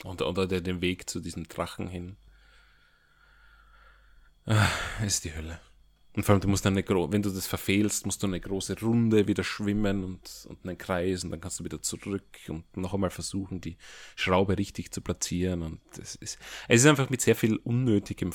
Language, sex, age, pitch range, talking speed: German, male, 30-49, 90-110 Hz, 190 wpm